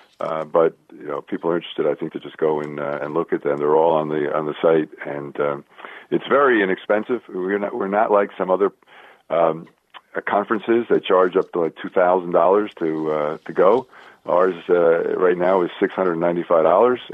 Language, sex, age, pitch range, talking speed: English, male, 50-69, 80-100 Hz, 215 wpm